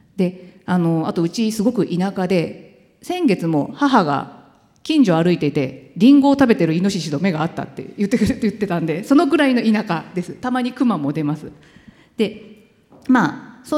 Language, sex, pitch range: Japanese, female, 165-250 Hz